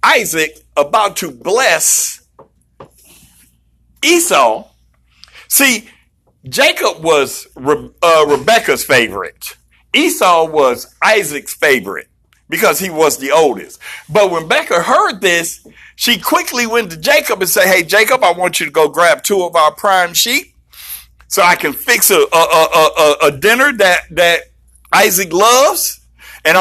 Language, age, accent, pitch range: English, 60-79, American, 160-220 Hz